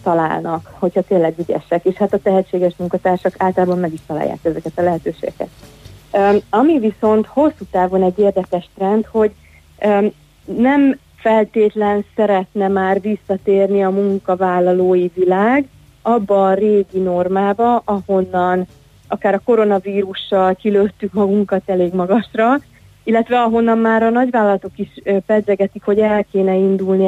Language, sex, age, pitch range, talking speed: Hungarian, female, 30-49, 180-210 Hz, 120 wpm